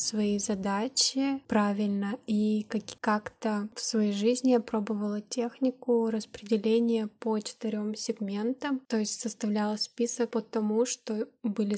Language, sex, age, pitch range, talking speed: Russian, female, 20-39, 205-230 Hz, 115 wpm